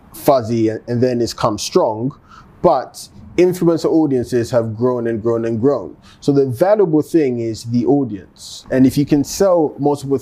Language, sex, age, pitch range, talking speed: English, male, 20-39, 110-130 Hz, 165 wpm